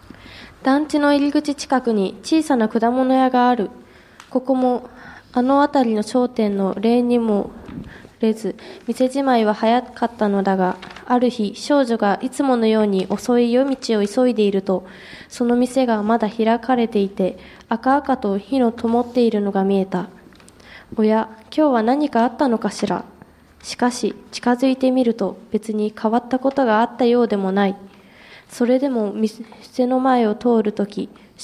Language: Japanese